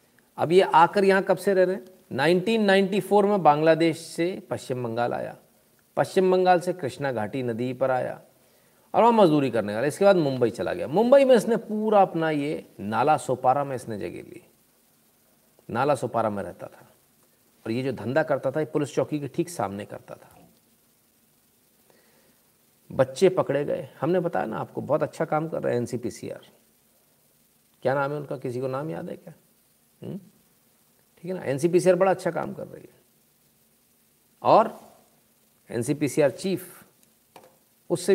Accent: native